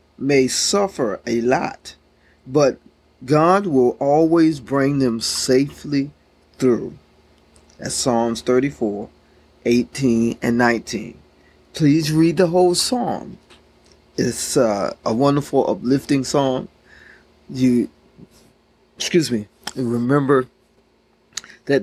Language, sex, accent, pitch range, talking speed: English, male, American, 125-165 Hz, 95 wpm